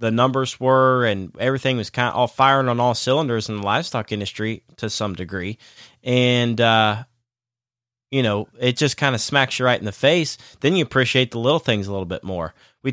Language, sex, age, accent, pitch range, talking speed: English, male, 20-39, American, 110-130 Hz, 210 wpm